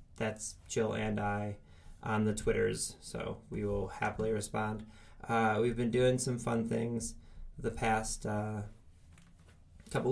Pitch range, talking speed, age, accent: 100-120 Hz, 135 wpm, 20-39, American